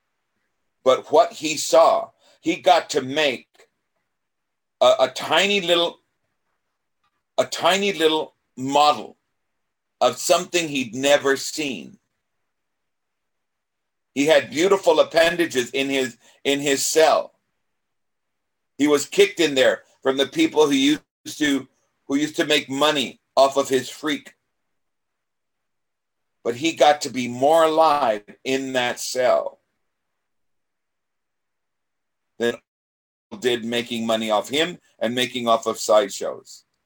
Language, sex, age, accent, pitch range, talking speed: English, male, 50-69, American, 125-165 Hz, 115 wpm